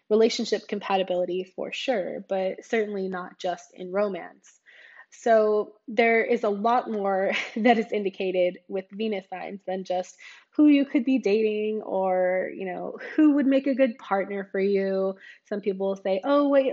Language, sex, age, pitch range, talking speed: English, female, 20-39, 195-240 Hz, 160 wpm